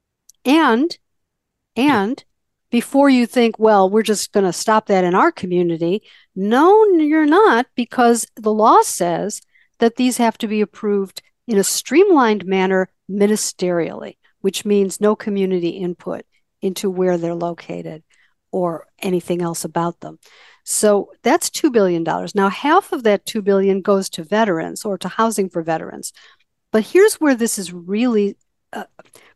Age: 60-79